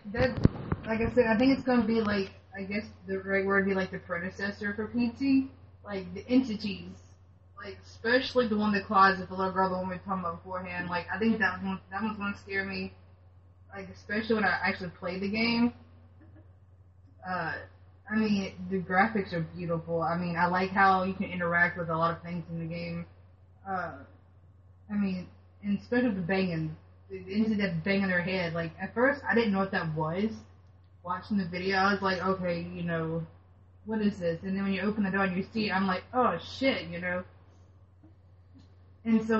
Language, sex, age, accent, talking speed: English, female, 20-39, American, 205 wpm